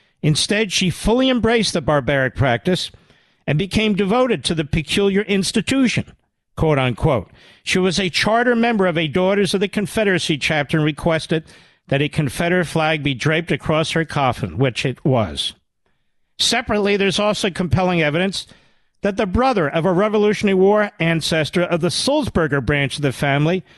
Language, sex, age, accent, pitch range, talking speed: English, male, 50-69, American, 140-190 Hz, 155 wpm